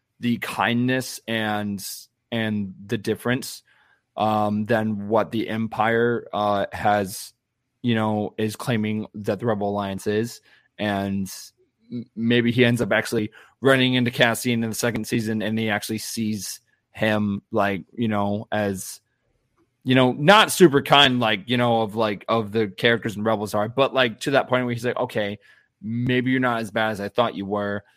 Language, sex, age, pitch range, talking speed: English, male, 20-39, 105-125 Hz, 170 wpm